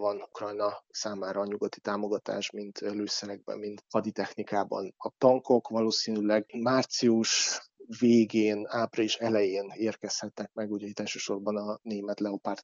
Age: 30-49